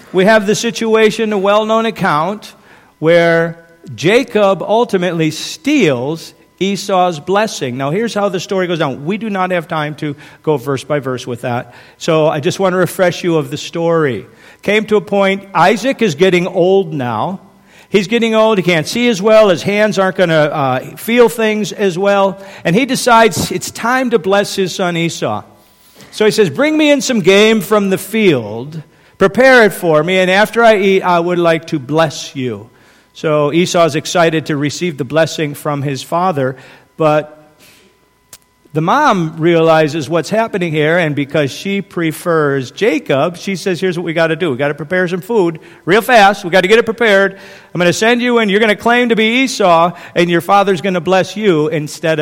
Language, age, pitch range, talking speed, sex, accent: English, 50-69, 155-210 Hz, 195 wpm, male, American